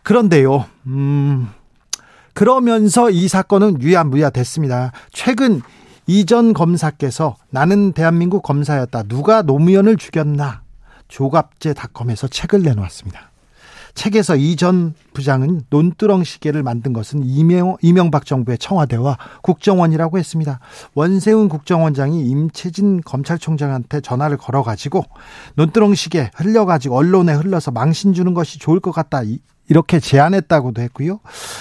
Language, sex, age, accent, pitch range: Korean, male, 40-59, native, 140-195 Hz